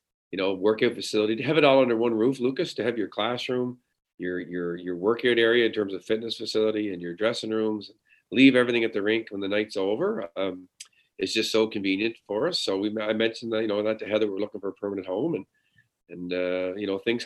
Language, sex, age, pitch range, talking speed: English, male, 40-59, 95-115 Hz, 235 wpm